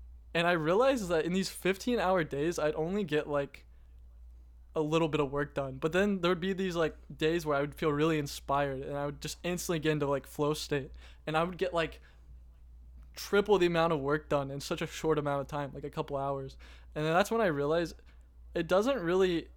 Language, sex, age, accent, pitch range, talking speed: English, male, 20-39, American, 145-170 Hz, 225 wpm